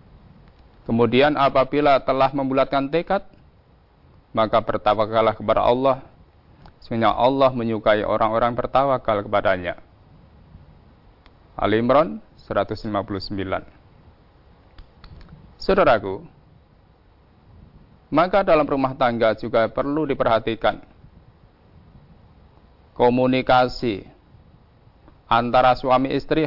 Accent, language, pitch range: native, Indonesian, 95-135 Hz